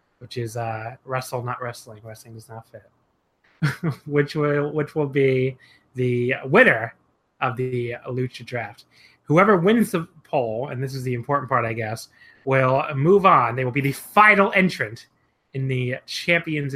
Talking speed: 160 wpm